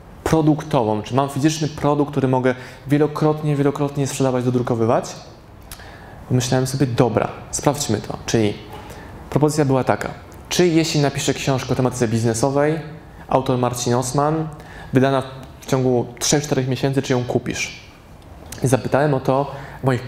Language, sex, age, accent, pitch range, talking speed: Polish, male, 20-39, native, 115-140 Hz, 125 wpm